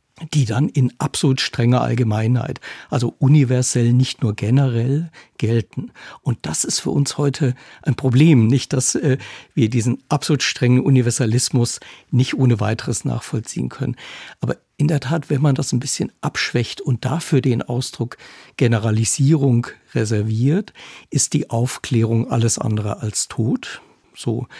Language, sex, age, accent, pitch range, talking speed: German, male, 60-79, German, 115-140 Hz, 140 wpm